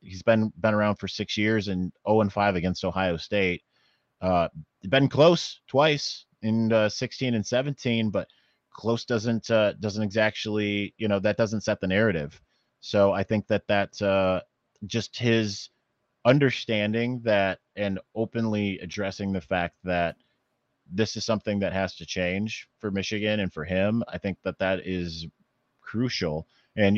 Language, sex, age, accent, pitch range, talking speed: English, male, 30-49, American, 95-110 Hz, 160 wpm